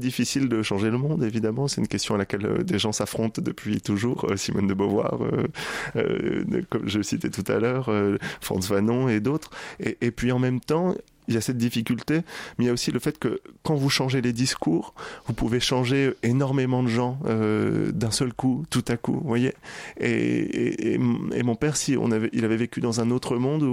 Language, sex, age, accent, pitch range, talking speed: French, male, 20-39, French, 110-130 Hz, 220 wpm